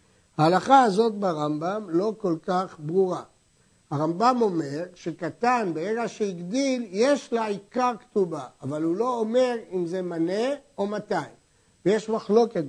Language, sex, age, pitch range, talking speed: Hebrew, male, 60-79, 165-225 Hz, 130 wpm